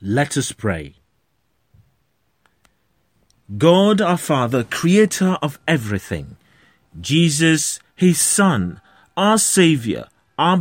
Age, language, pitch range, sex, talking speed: 30-49, English, 120-175 Hz, male, 85 wpm